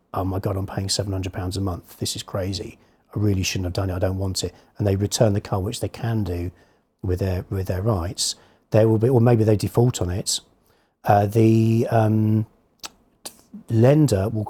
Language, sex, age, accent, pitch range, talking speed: English, male, 40-59, British, 100-120 Hz, 205 wpm